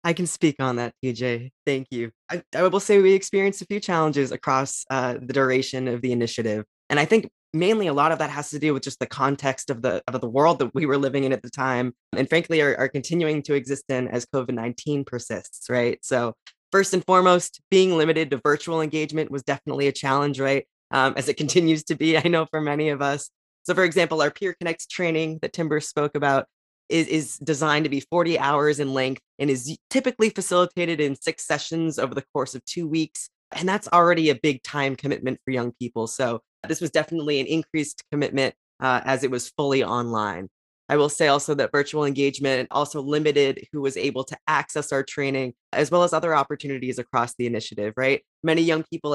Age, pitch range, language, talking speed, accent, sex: 20-39, 130-160 Hz, English, 210 wpm, American, female